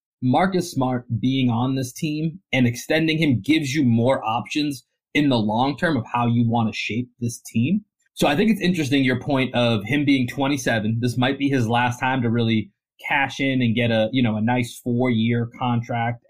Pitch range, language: 115-140 Hz, English